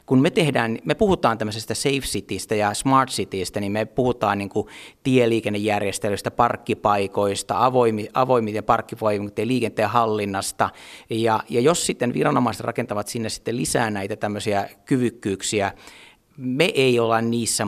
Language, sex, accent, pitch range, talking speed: Finnish, male, native, 105-125 Hz, 130 wpm